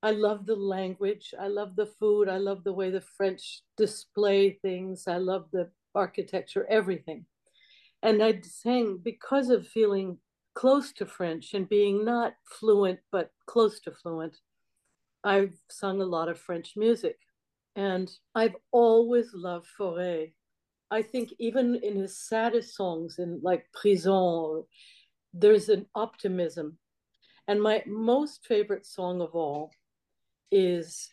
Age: 60-79